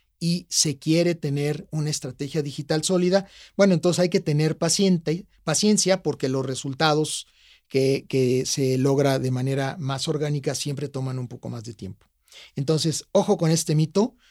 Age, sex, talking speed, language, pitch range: 40-59, male, 155 wpm, Spanish, 135-170 Hz